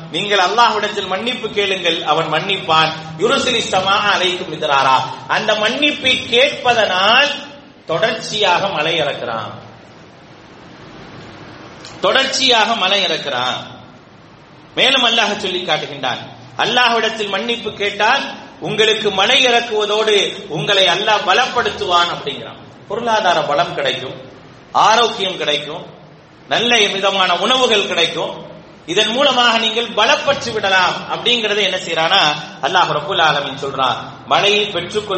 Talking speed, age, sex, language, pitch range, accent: 105 wpm, 30-49, male, English, 170-235 Hz, Indian